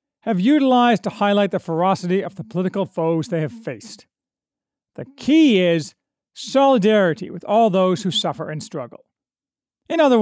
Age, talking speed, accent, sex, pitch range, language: 40-59, 155 wpm, American, male, 175-245 Hz, English